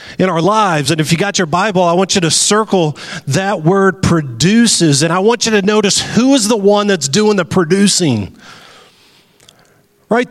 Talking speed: 185 wpm